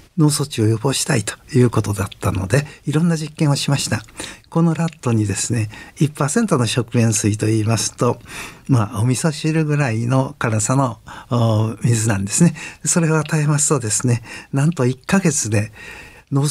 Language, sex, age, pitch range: Japanese, male, 50-69, 115-150 Hz